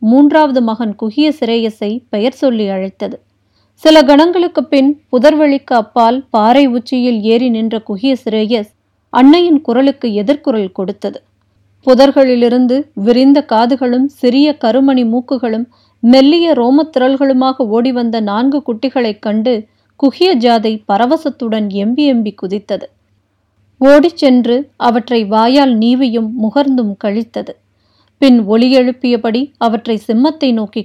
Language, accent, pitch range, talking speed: Tamil, native, 220-270 Hz, 100 wpm